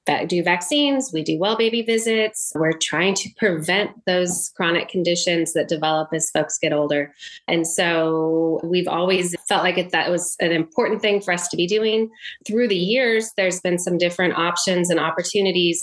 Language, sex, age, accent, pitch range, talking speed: English, female, 20-39, American, 165-195 Hz, 180 wpm